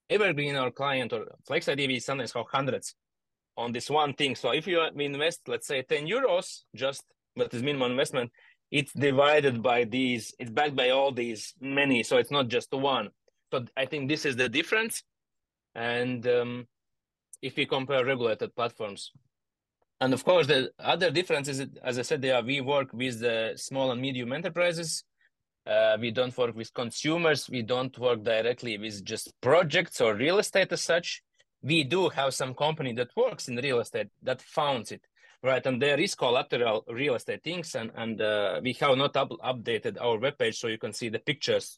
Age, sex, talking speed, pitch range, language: 30-49, male, 190 wpm, 120-170 Hz, English